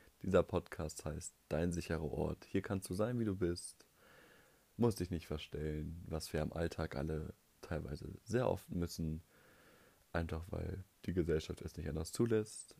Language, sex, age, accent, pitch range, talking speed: German, male, 30-49, German, 80-100 Hz, 160 wpm